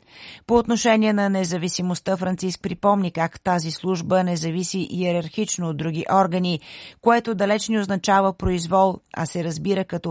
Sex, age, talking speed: female, 30-49, 140 wpm